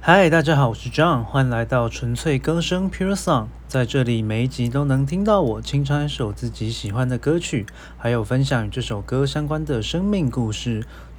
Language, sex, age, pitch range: Chinese, male, 20-39, 110-150 Hz